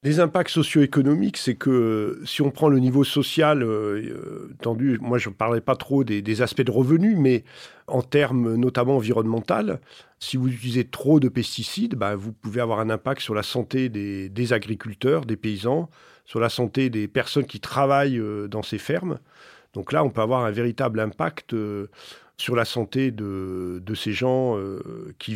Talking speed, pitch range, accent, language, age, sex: 175 wpm, 110-140 Hz, French, French, 40-59, male